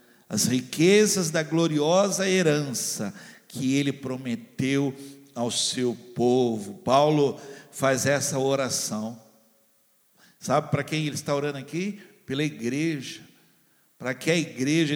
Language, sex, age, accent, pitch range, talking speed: Portuguese, male, 60-79, Brazilian, 145-215 Hz, 110 wpm